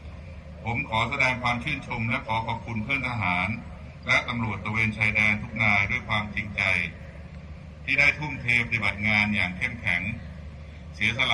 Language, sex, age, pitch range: Thai, male, 60-79, 85-115 Hz